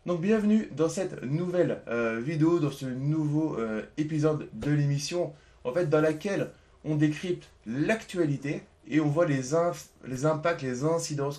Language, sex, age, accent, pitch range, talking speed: French, male, 20-39, French, 115-155 Hz, 160 wpm